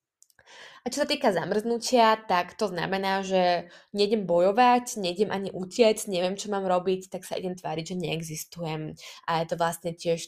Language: Slovak